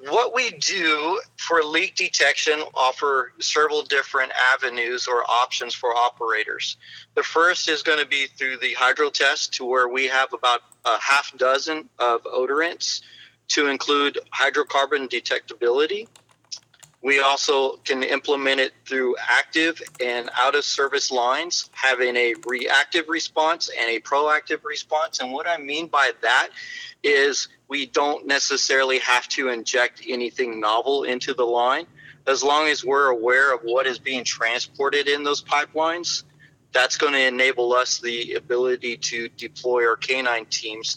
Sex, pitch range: male, 125-155 Hz